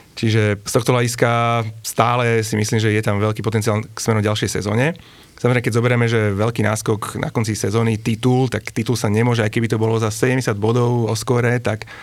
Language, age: Slovak, 30-49